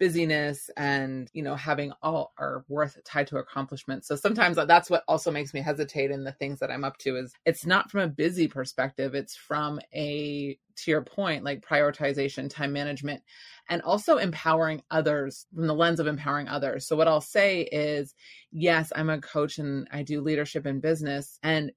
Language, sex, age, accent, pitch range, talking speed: English, female, 20-39, American, 140-165 Hz, 190 wpm